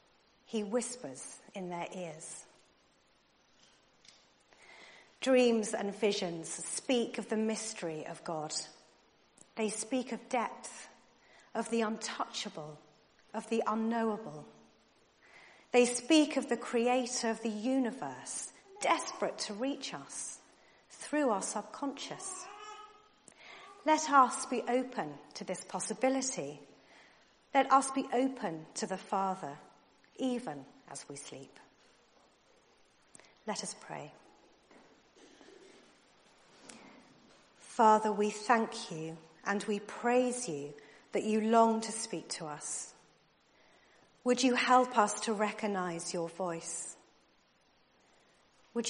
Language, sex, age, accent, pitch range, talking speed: English, female, 40-59, British, 170-245 Hz, 105 wpm